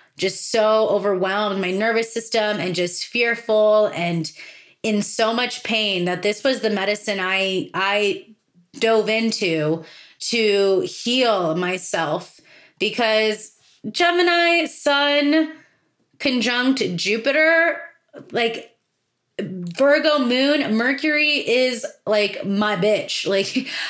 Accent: American